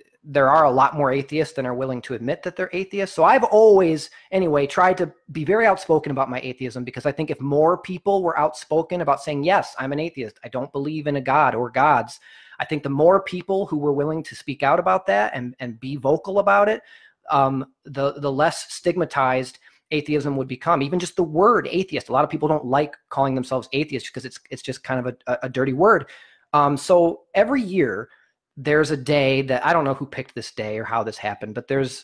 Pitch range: 130-165 Hz